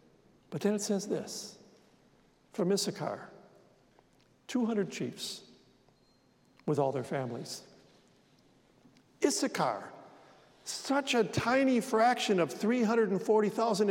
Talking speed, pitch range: 85 wpm, 170-215 Hz